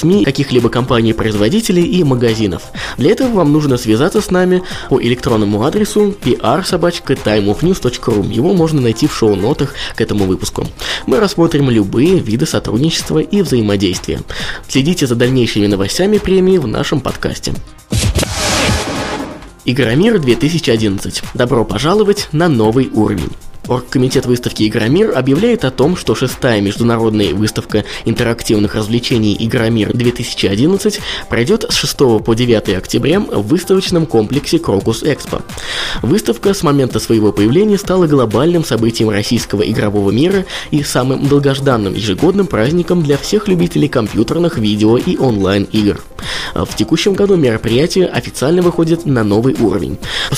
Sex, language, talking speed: male, Russian, 120 wpm